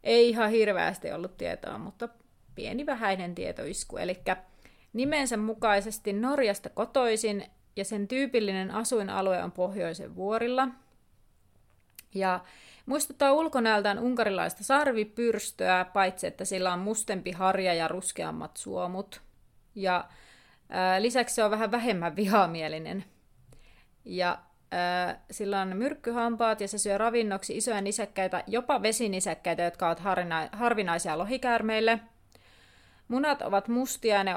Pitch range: 180-230 Hz